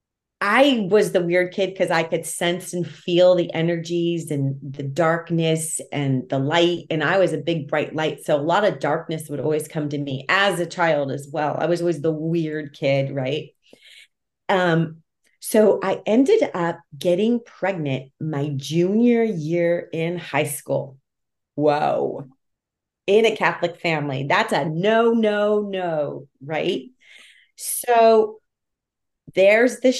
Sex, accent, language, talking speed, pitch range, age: female, American, English, 150 wpm, 155-195 Hz, 30-49